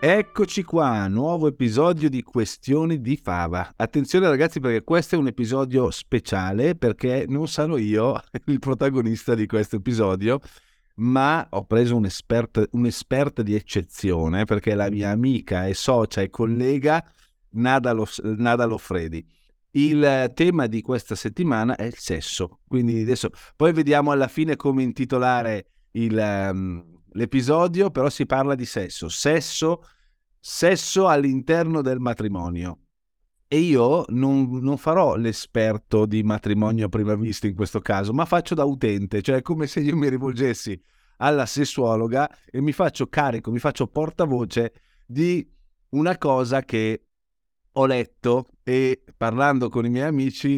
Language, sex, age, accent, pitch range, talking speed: Italian, male, 50-69, native, 110-145 Hz, 140 wpm